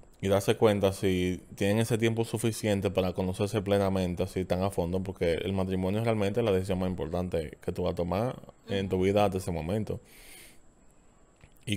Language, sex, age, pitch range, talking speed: Spanish, male, 20-39, 90-105 Hz, 185 wpm